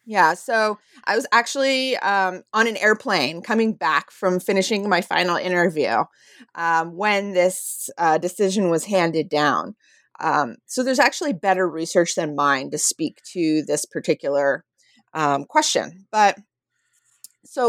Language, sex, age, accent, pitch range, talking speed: English, female, 30-49, American, 155-215 Hz, 140 wpm